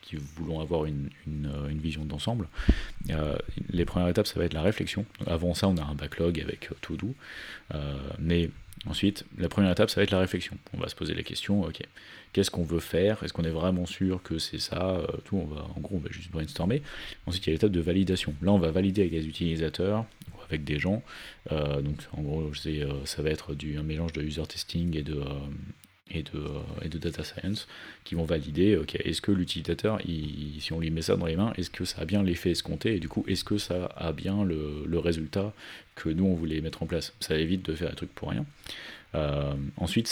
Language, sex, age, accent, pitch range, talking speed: French, male, 30-49, French, 75-95 Hz, 225 wpm